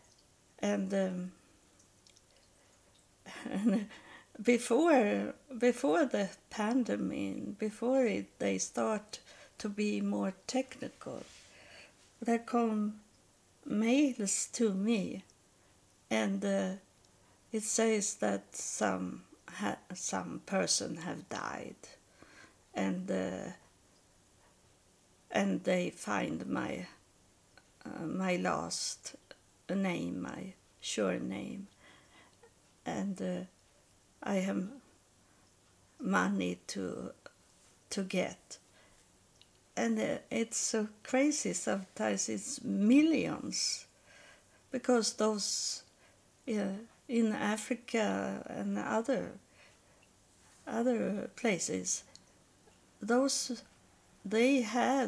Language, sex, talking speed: English, female, 75 wpm